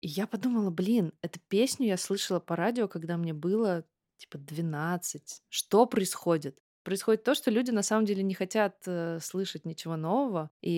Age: 20-39